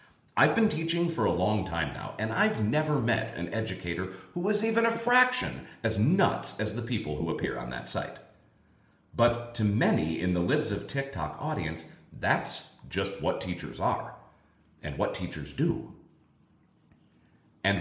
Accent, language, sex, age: American, English, male, 40-59